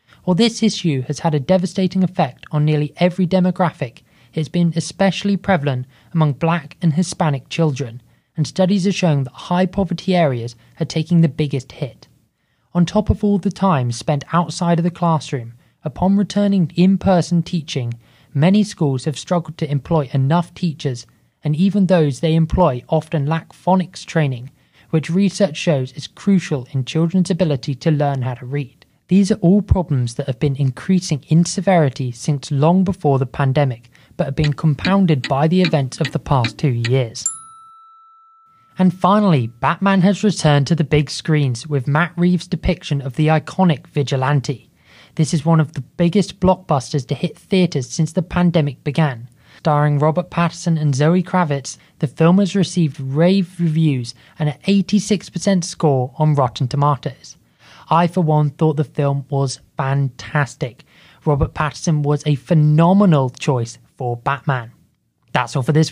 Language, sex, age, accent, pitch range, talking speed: English, male, 20-39, British, 140-180 Hz, 160 wpm